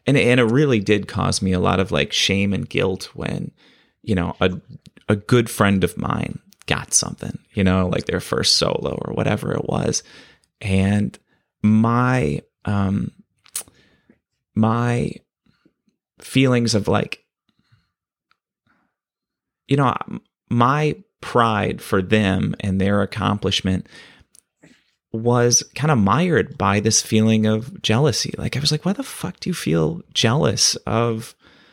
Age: 30-49